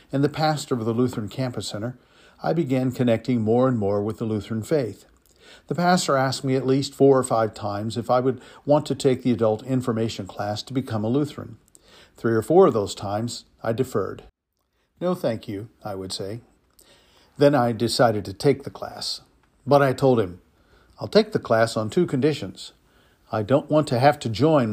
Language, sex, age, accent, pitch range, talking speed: English, male, 50-69, American, 105-135 Hz, 195 wpm